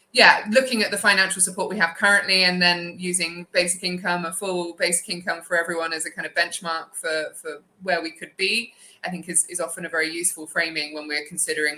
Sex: female